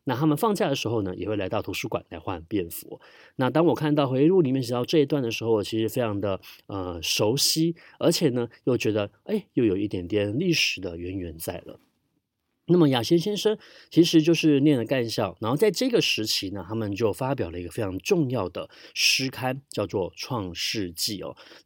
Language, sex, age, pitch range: Chinese, male, 30-49, 110-160 Hz